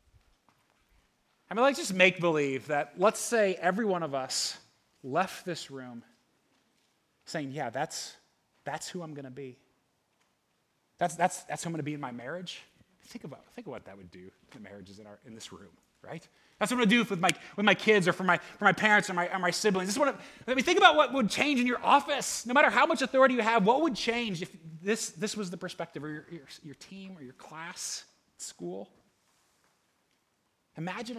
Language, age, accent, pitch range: English, 30-49, American, 150-210 Hz